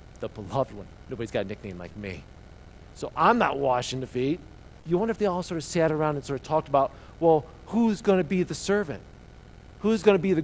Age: 40-59